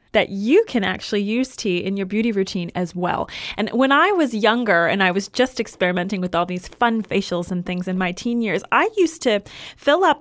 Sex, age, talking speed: female, 30-49, 225 wpm